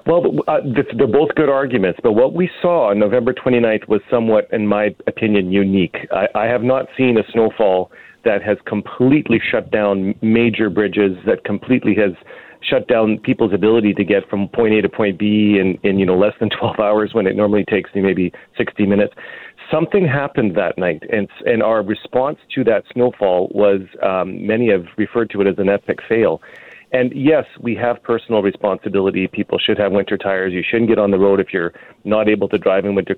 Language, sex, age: English, male, 40-59